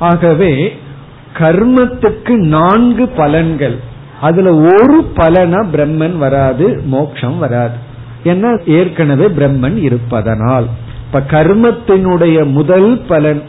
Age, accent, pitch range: 50-69, native, 130-170 Hz